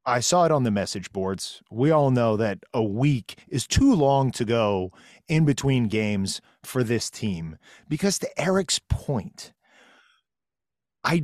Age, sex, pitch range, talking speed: 30-49, male, 130-180 Hz, 155 wpm